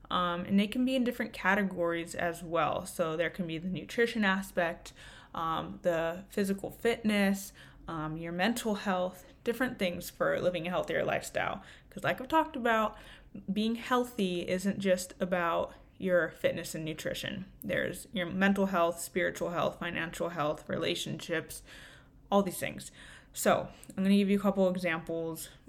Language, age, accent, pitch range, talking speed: English, 20-39, American, 170-200 Hz, 155 wpm